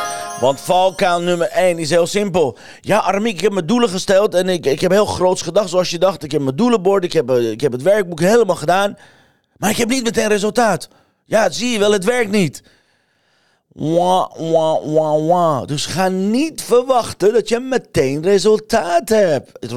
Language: Dutch